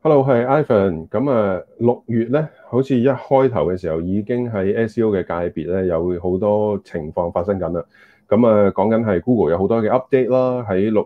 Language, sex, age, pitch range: Chinese, male, 30-49, 90-120 Hz